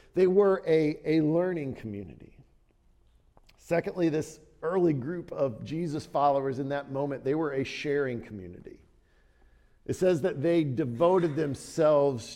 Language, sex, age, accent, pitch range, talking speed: English, male, 50-69, American, 125-160 Hz, 130 wpm